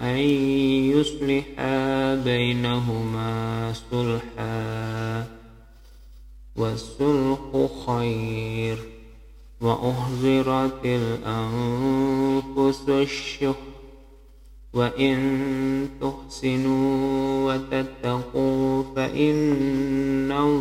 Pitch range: 120-135 Hz